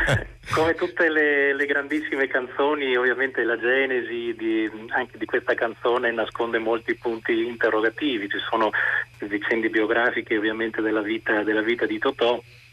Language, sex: Italian, male